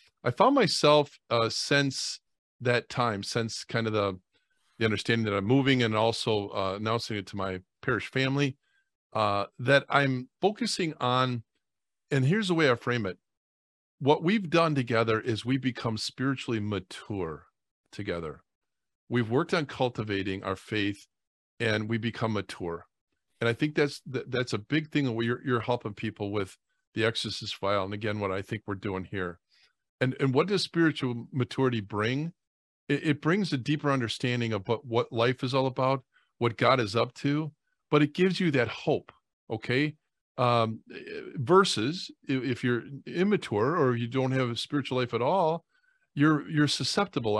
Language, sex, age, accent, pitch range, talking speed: English, male, 40-59, American, 110-145 Hz, 165 wpm